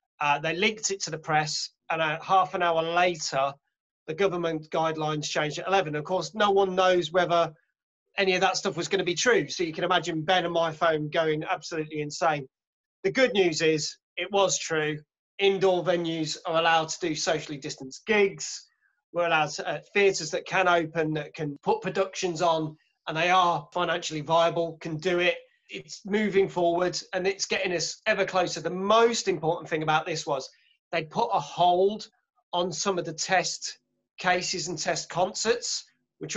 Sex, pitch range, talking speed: male, 160-190 Hz, 185 wpm